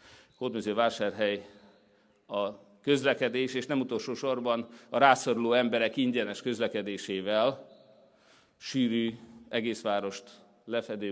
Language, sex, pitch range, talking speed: Hungarian, male, 100-120 Hz, 85 wpm